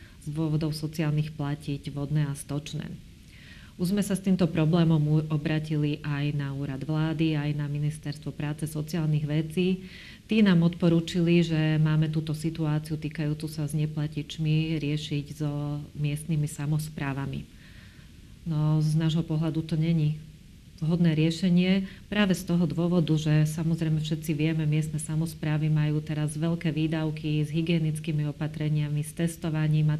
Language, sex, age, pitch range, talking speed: Slovak, female, 40-59, 150-160 Hz, 135 wpm